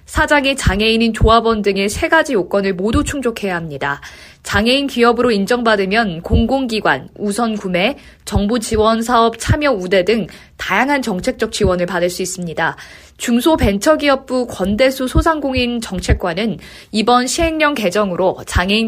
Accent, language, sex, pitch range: native, Korean, female, 190-250 Hz